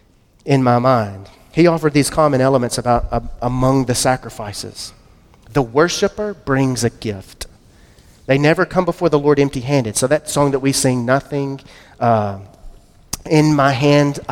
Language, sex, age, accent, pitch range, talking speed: English, male, 30-49, American, 120-155 Hz, 150 wpm